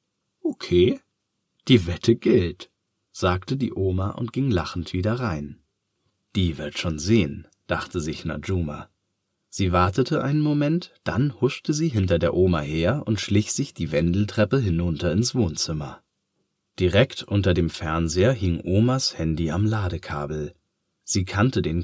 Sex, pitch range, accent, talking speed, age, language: male, 85-115 Hz, German, 135 wpm, 30-49, German